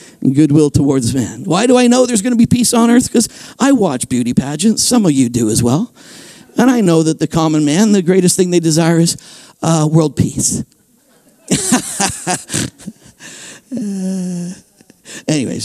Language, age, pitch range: English, 50-69, 150-195 Hz